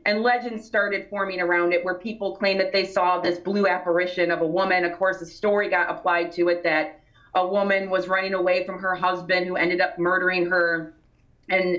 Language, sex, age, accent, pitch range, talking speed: English, female, 30-49, American, 175-215 Hz, 210 wpm